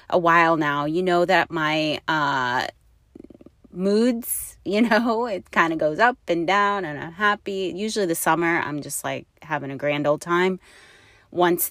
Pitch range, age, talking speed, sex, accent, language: 155-195 Hz, 30-49, 170 wpm, female, American, English